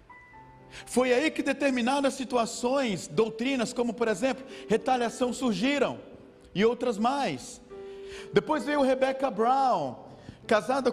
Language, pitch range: Portuguese, 240-280 Hz